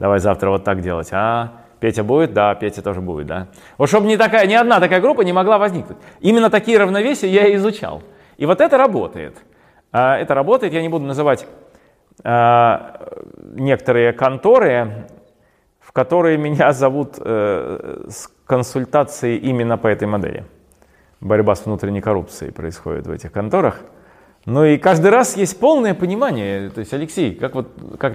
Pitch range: 115-175 Hz